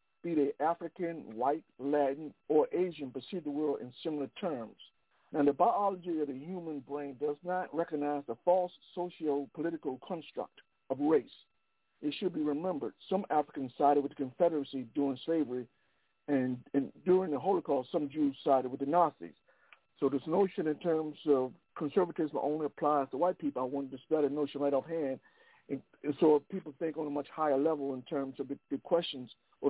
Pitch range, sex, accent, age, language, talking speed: 135-165 Hz, male, American, 60-79, English, 180 wpm